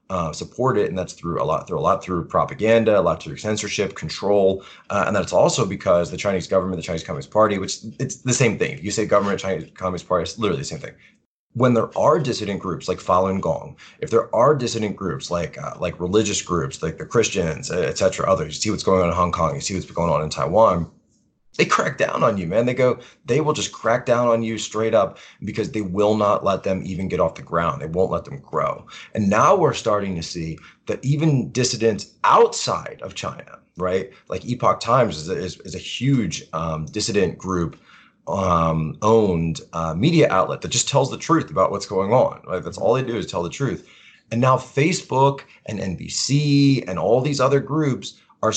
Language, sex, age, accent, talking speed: English, male, 20-39, American, 215 wpm